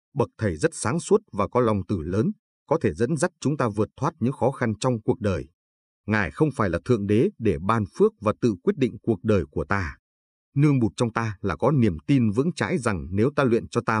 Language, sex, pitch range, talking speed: Vietnamese, male, 100-130 Hz, 245 wpm